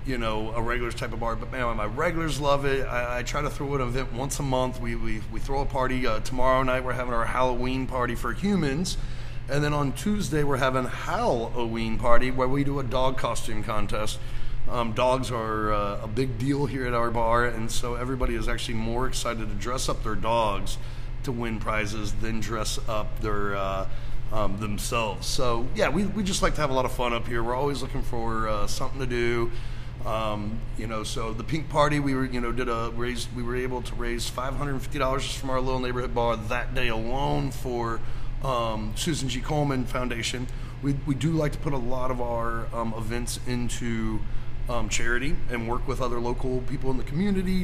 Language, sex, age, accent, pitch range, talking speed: English, male, 30-49, American, 115-130 Hz, 215 wpm